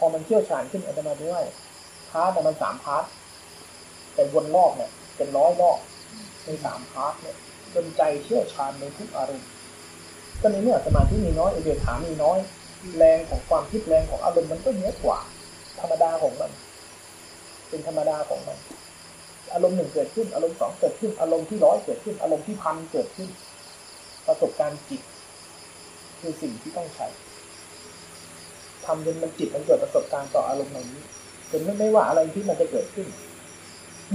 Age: 30-49